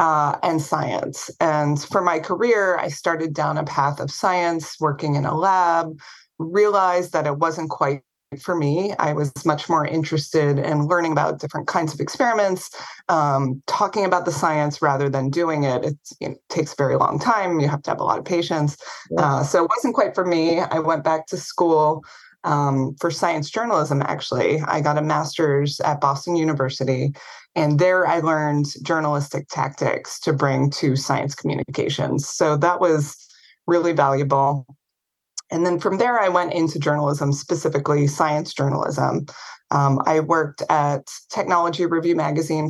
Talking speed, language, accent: 165 wpm, English, American